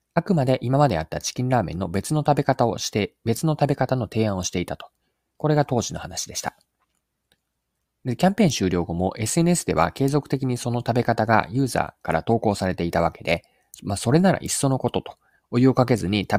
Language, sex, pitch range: Japanese, male, 95-140 Hz